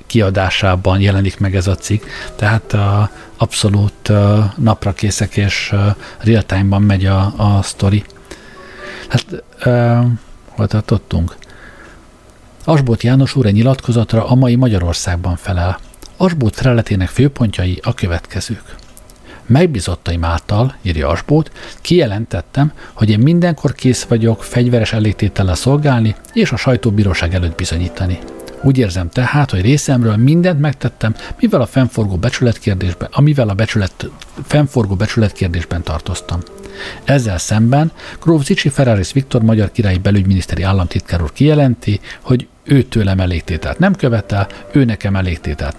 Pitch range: 95-125 Hz